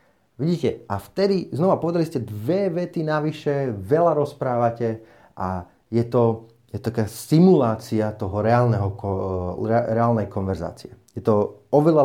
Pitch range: 100-130 Hz